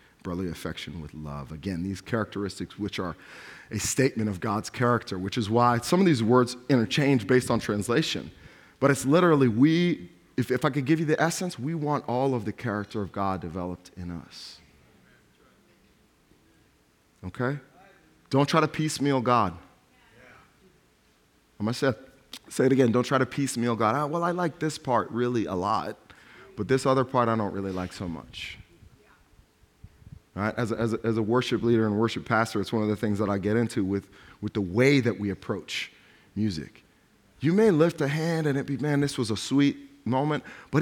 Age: 30-49